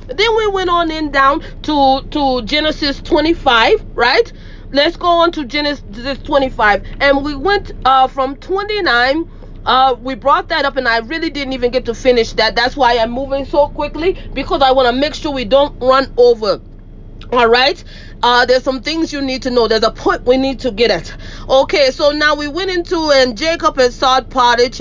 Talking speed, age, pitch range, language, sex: 200 wpm, 30-49, 240-300 Hz, English, female